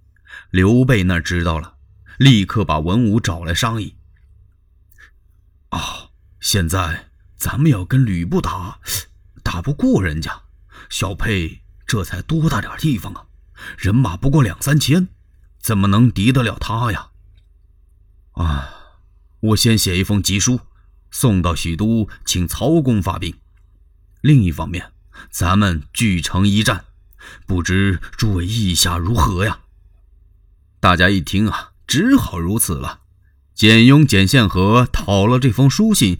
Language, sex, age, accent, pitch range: Chinese, male, 30-49, native, 85-125 Hz